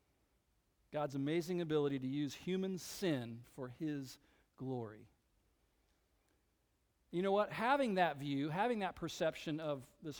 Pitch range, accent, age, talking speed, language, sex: 140-215 Hz, American, 50-69, 125 wpm, English, male